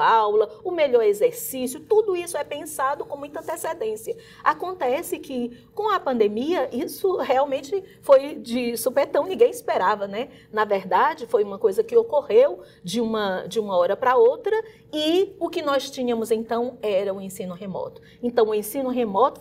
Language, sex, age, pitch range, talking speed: Portuguese, female, 40-59, 255-420 Hz, 165 wpm